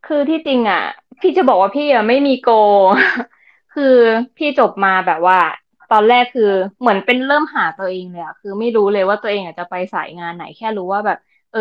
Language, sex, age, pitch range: Thai, female, 20-39, 195-240 Hz